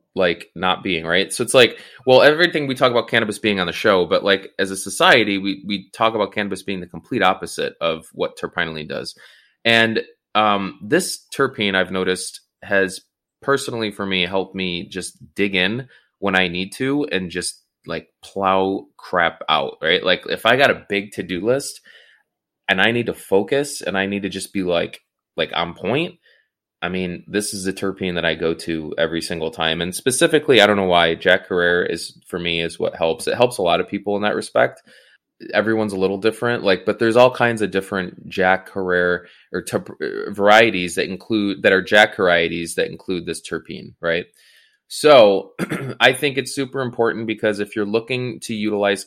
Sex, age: male, 20-39